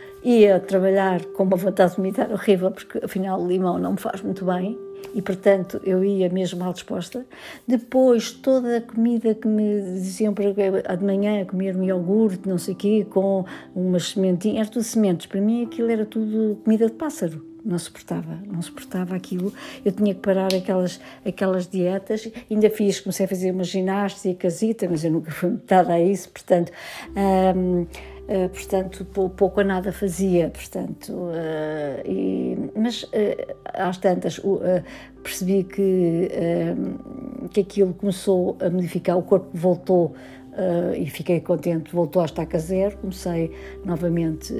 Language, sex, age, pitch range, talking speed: Portuguese, female, 50-69, 180-205 Hz, 165 wpm